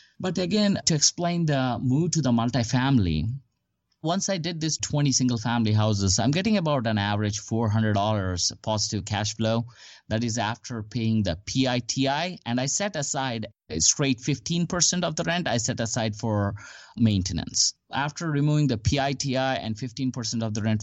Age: 30-49